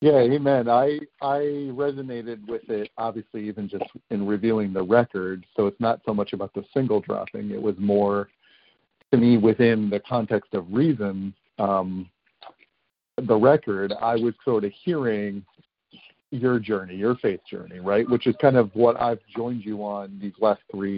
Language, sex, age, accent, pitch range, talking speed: English, male, 50-69, American, 100-120 Hz, 170 wpm